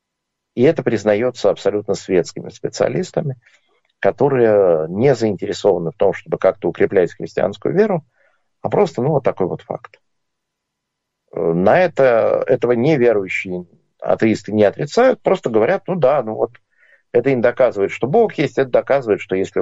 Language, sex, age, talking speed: Russian, male, 50-69, 140 wpm